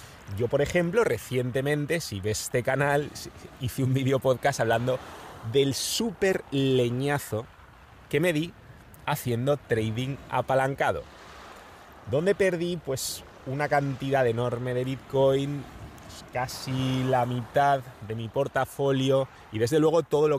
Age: 30-49